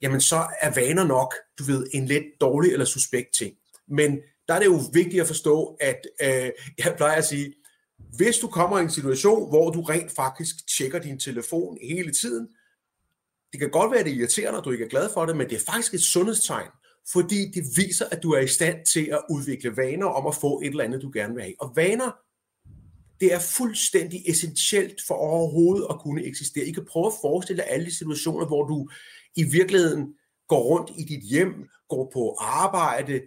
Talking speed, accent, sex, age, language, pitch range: 205 wpm, native, male, 30-49, Danish, 140-185 Hz